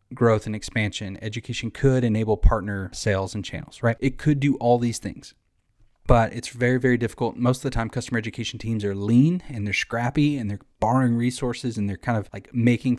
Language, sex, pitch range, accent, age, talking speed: English, male, 105-125 Hz, American, 20-39, 205 wpm